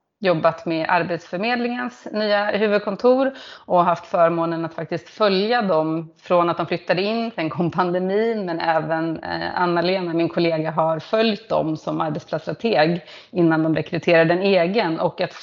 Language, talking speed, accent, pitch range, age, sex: Swedish, 145 wpm, native, 165-205 Hz, 30-49, female